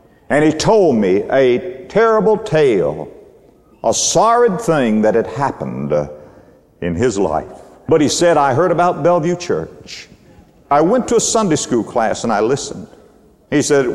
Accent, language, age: American, English, 60-79